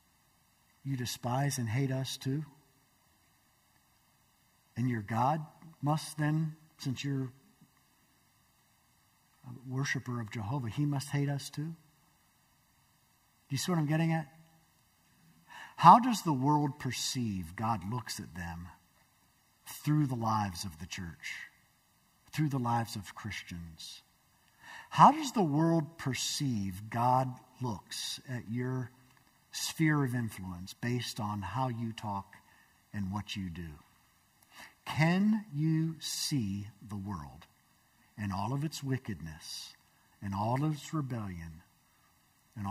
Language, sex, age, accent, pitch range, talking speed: English, male, 50-69, American, 115-175 Hz, 120 wpm